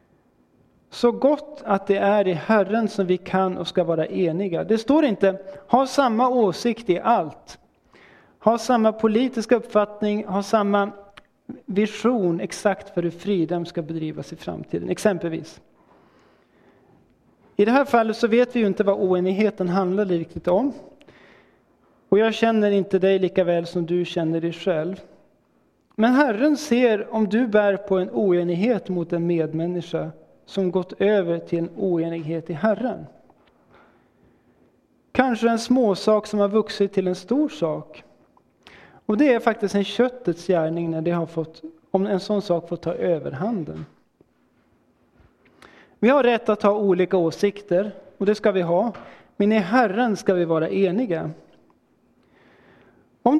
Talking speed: 145 wpm